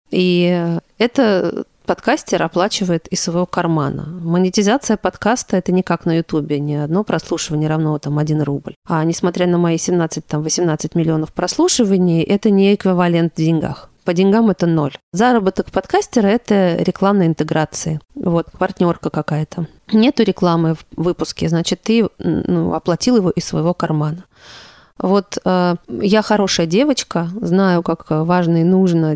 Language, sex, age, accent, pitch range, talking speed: Russian, female, 30-49, native, 160-195 Hz, 140 wpm